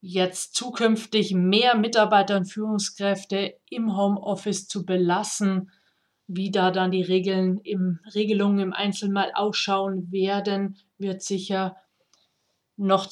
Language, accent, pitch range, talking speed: German, German, 190-215 Hz, 100 wpm